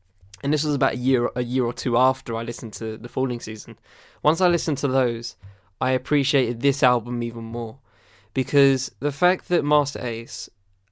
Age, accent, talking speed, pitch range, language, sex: 10-29, British, 180 wpm, 115-140 Hz, English, male